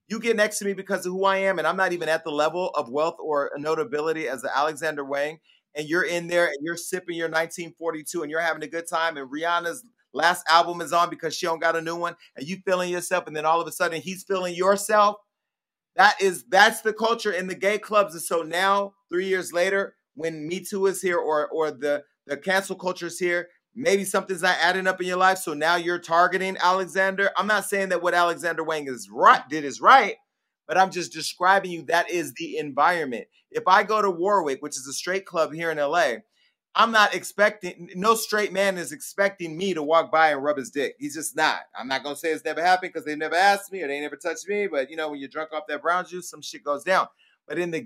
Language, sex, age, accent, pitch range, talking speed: English, male, 30-49, American, 160-195 Hz, 245 wpm